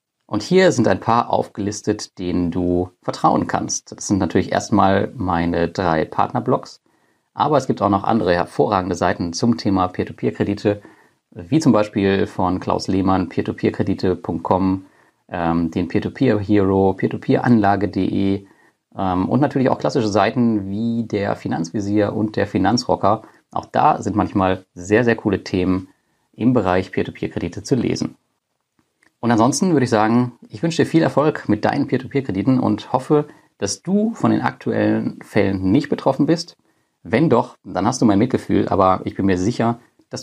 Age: 30-49